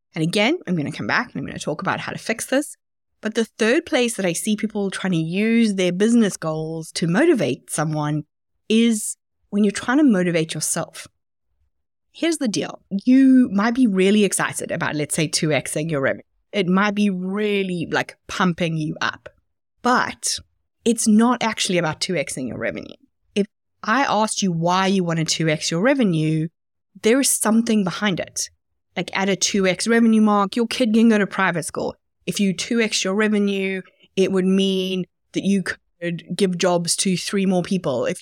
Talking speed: 185 wpm